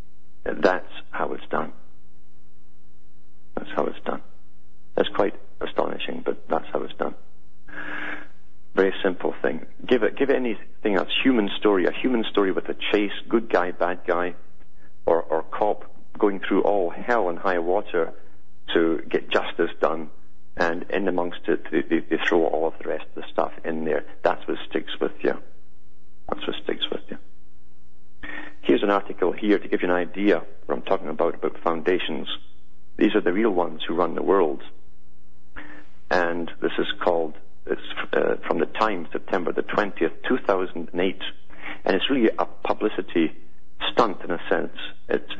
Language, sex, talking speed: English, male, 165 wpm